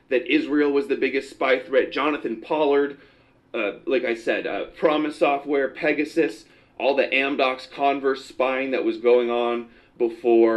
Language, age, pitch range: English, 30-49, 120-170 Hz